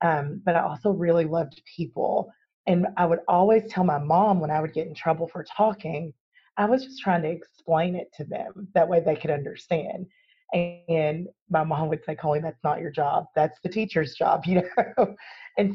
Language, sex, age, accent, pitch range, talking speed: English, female, 30-49, American, 160-185 Hz, 205 wpm